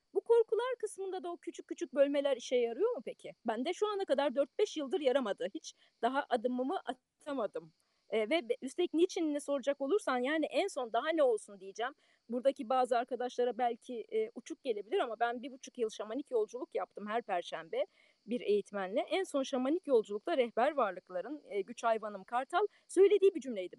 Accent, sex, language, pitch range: native, female, Turkish, 235-350 Hz